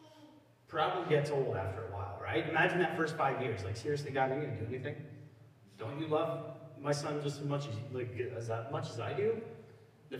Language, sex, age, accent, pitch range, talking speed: English, male, 30-49, American, 115-155 Hz, 210 wpm